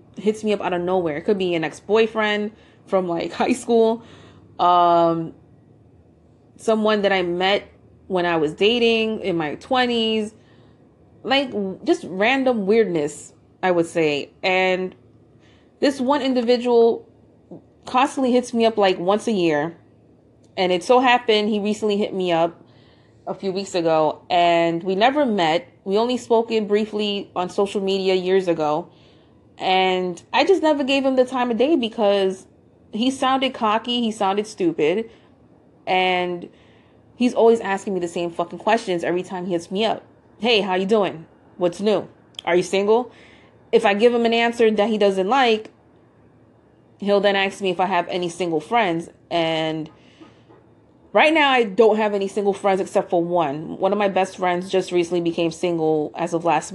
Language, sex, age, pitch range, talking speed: English, female, 30-49, 170-225 Hz, 165 wpm